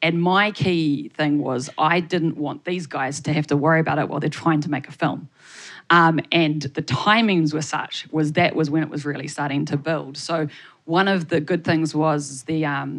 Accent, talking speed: Australian, 220 wpm